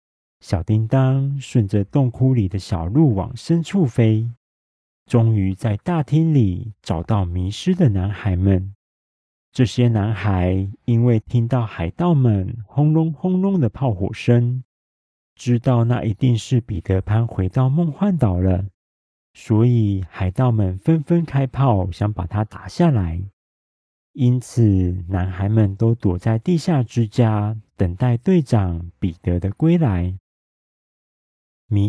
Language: Chinese